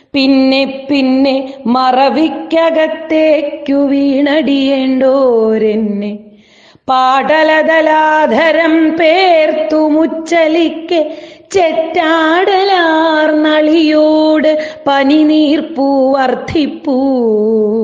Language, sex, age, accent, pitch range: Malayalam, female, 30-49, native, 250-310 Hz